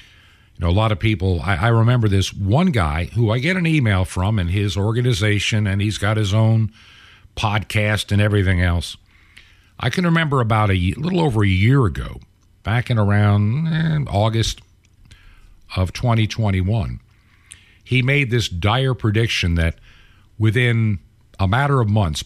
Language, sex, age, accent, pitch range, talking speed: English, male, 50-69, American, 100-125 Hz, 155 wpm